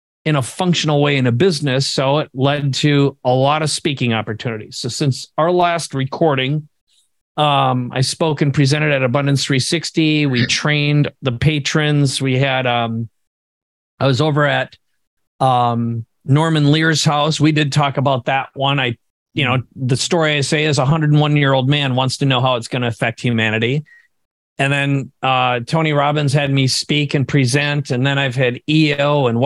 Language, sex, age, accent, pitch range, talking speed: English, male, 40-59, American, 125-150 Hz, 175 wpm